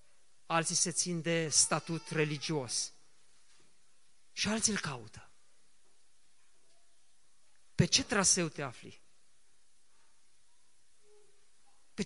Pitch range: 155-215 Hz